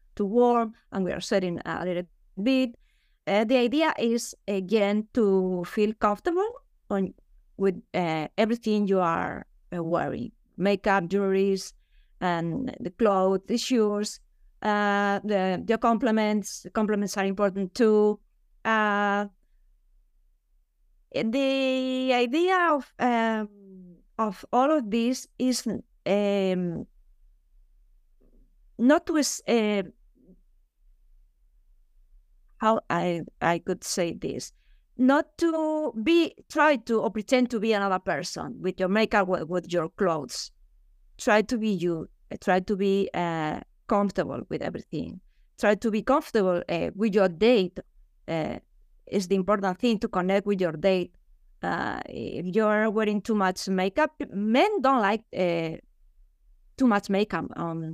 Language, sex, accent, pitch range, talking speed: English, female, Spanish, 180-230 Hz, 125 wpm